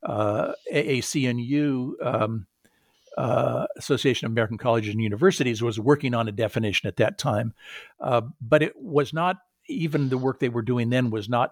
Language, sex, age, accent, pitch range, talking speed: English, male, 60-79, American, 110-135 Hz, 165 wpm